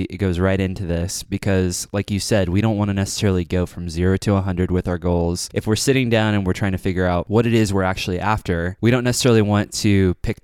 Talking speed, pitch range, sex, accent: 255 wpm, 90-110 Hz, male, American